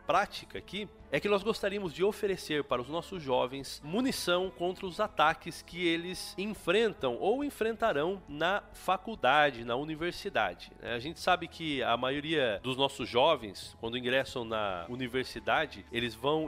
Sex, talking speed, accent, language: male, 145 wpm, Brazilian, Portuguese